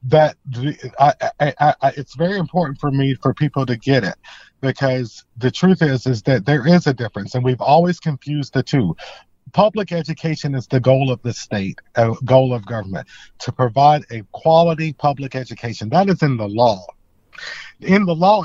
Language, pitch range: English, 130-165 Hz